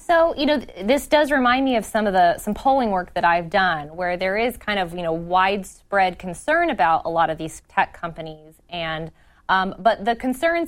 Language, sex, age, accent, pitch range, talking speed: English, female, 20-39, American, 175-225 Hz, 220 wpm